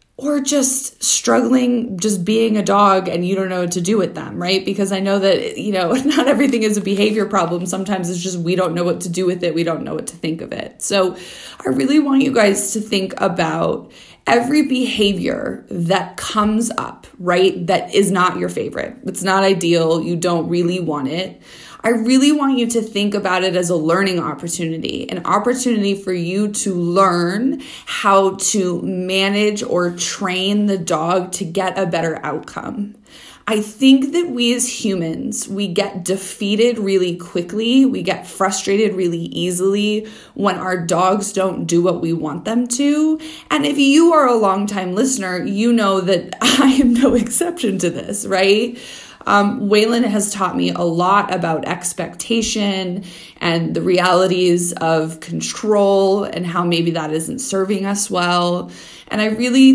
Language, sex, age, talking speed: English, female, 20-39, 175 wpm